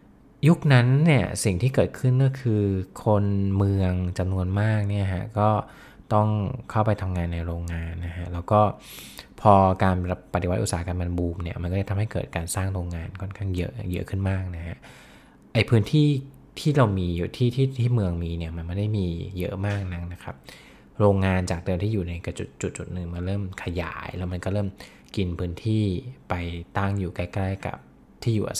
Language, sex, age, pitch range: English, male, 20-39, 90-105 Hz